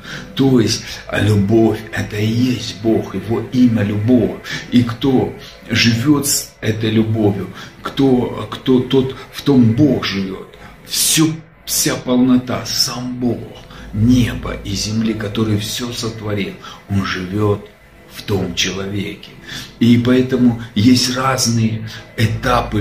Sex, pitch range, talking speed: male, 105-125 Hz, 110 wpm